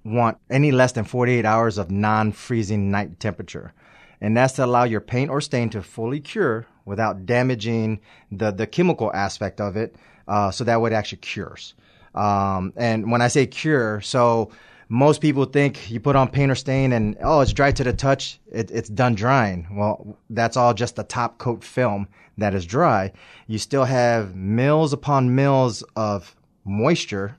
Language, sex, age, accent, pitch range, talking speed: English, male, 30-49, American, 100-120 Hz, 175 wpm